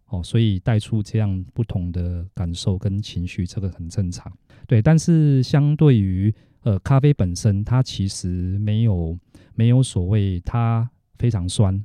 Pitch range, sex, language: 95-120 Hz, male, Chinese